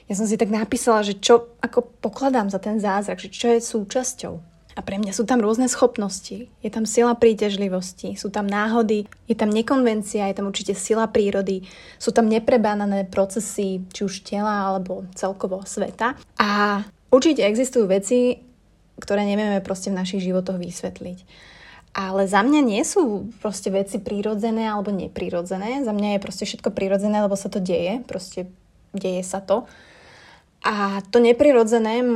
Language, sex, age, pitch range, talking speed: Slovak, female, 20-39, 195-230 Hz, 160 wpm